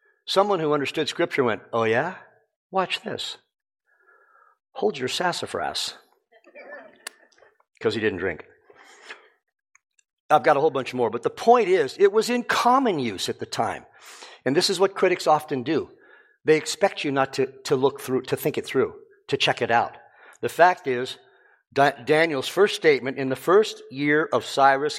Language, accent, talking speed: English, American, 165 wpm